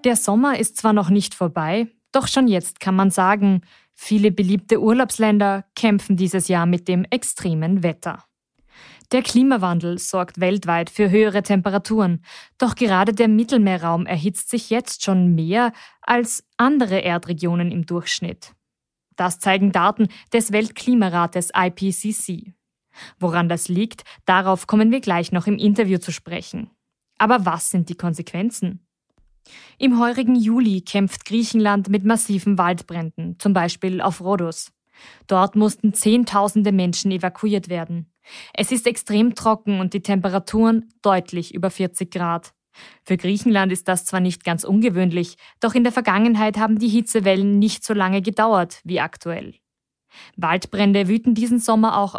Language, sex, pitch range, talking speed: German, female, 180-220 Hz, 140 wpm